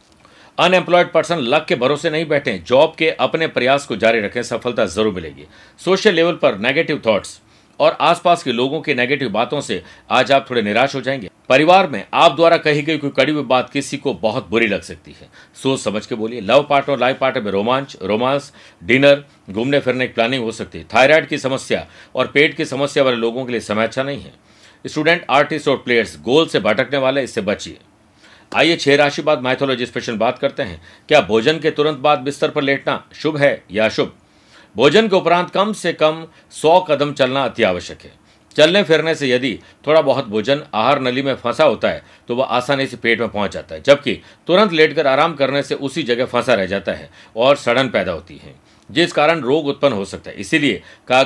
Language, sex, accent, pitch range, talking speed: Hindi, male, native, 120-155 Hz, 205 wpm